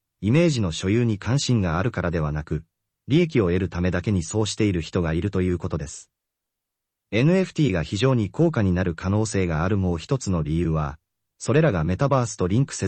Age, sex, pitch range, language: 30-49, male, 85-130 Hz, Japanese